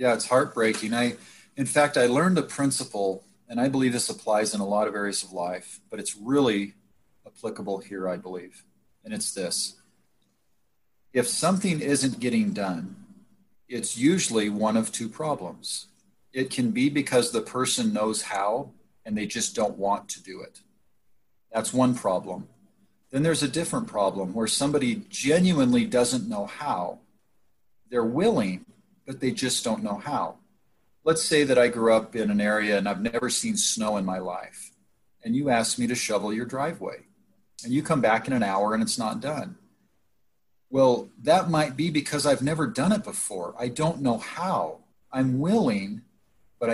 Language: English